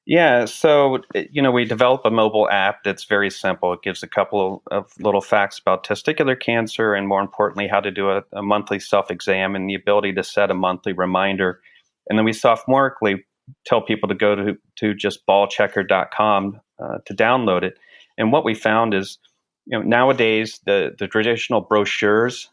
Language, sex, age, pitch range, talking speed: English, male, 40-59, 100-115 Hz, 180 wpm